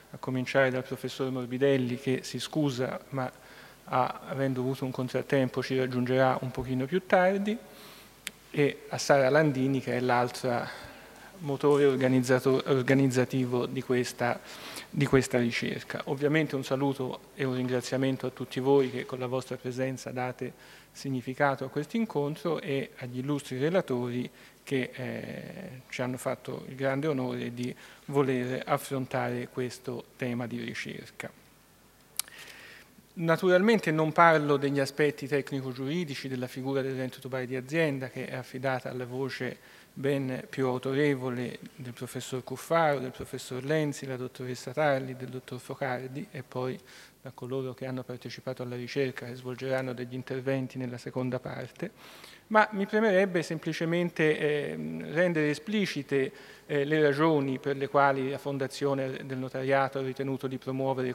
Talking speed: 140 wpm